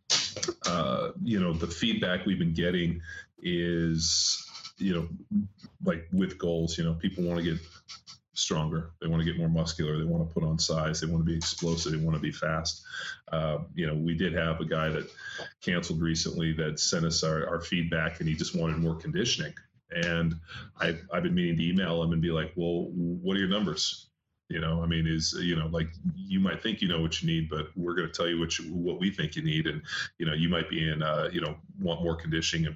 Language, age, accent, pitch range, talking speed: English, 30-49, American, 80-85 Hz, 230 wpm